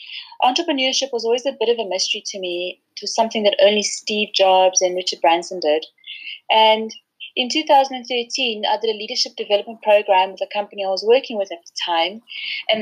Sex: female